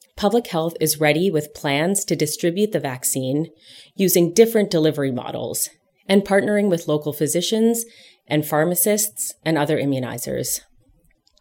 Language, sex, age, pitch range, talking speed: English, female, 30-49, 150-190 Hz, 125 wpm